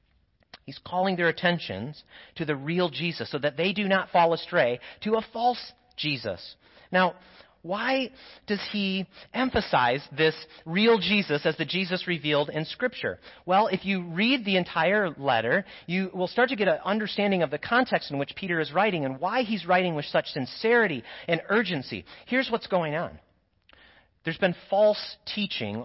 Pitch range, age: 140-195 Hz, 40-59